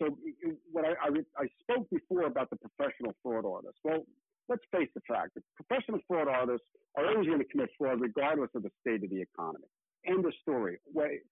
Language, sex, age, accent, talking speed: English, male, 60-79, American, 205 wpm